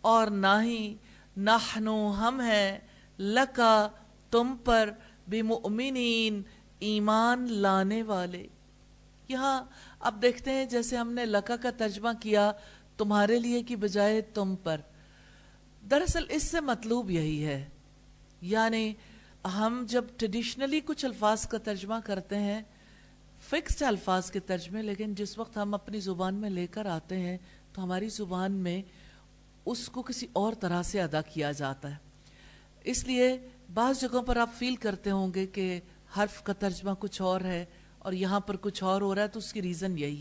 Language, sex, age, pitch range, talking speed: English, female, 50-69, 195-235 Hz, 150 wpm